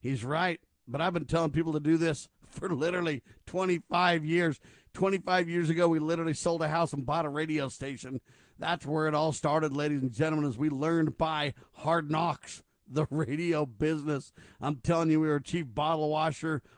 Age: 50-69